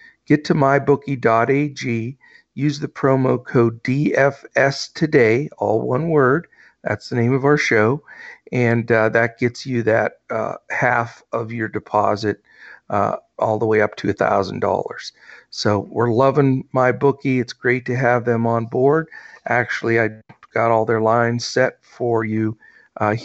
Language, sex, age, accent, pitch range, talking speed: English, male, 50-69, American, 115-140 Hz, 145 wpm